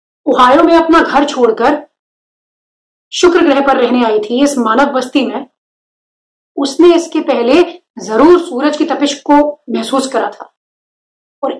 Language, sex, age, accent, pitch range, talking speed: Hindi, female, 30-49, native, 265-330 Hz, 140 wpm